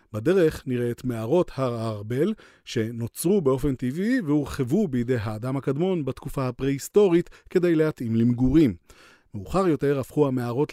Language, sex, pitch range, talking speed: Hebrew, male, 115-160 Hz, 120 wpm